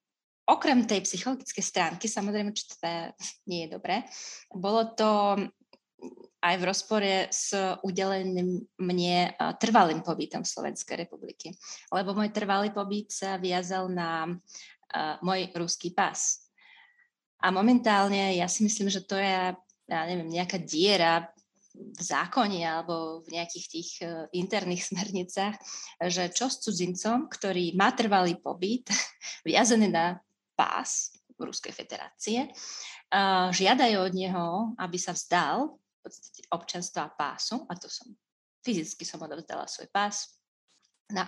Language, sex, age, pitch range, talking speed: Slovak, female, 20-39, 180-215 Hz, 130 wpm